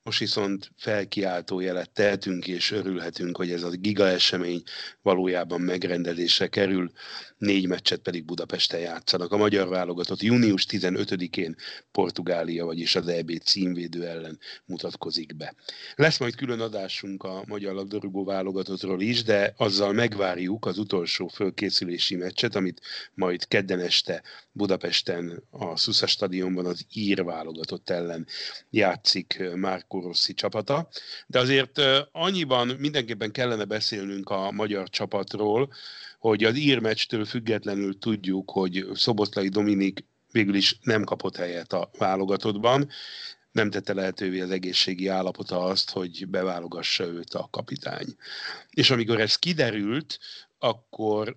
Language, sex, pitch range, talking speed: Hungarian, male, 90-110 Hz, 125 wpm